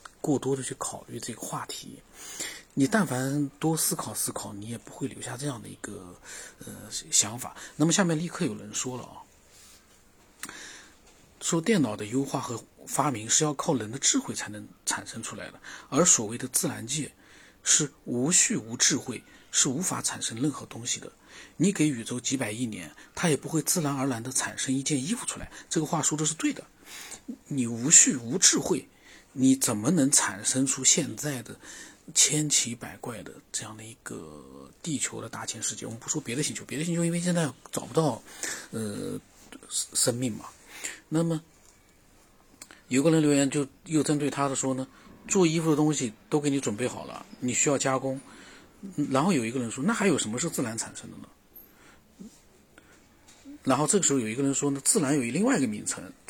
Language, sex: Chinese, male